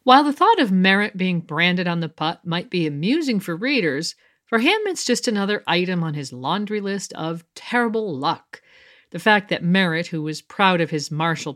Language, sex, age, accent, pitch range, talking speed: English, female, 50-69, American, 155-230 Hz, 195 wpm